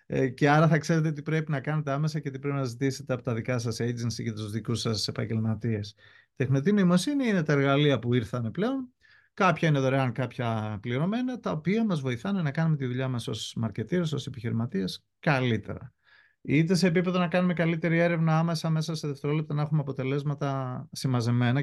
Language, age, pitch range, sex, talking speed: Greek, 30-49, 125-160 Hz, male, 185 wpm